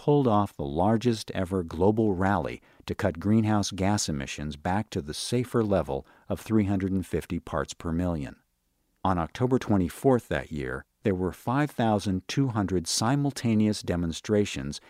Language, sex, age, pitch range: English, male, 50-69, 85-110 Hz